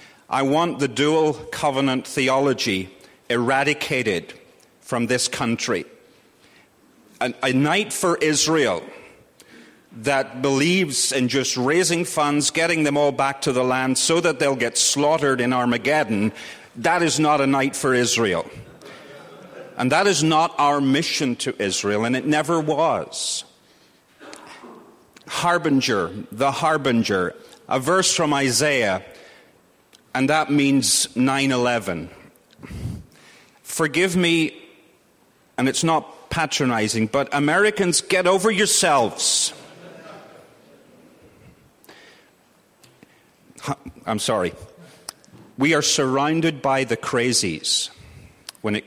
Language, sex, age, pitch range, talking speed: English, male, 40-59, 125-155 Hz, 105 wpm